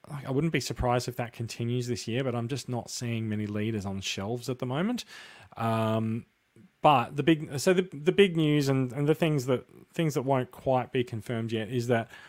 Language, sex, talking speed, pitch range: English, male, 215 wpm, 110-130 Hz